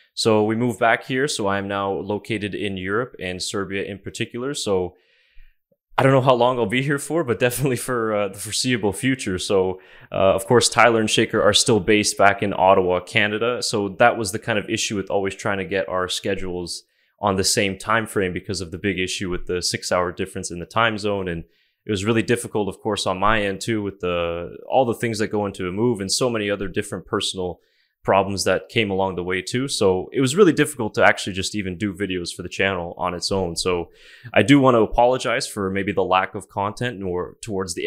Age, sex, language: 20-39, male, English